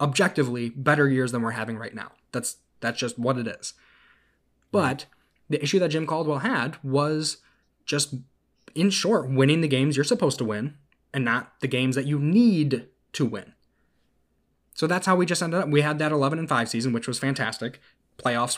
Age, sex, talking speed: 10-29, male, 190 wpm